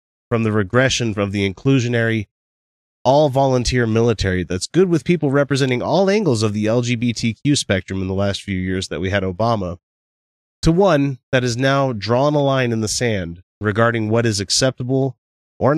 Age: 30-49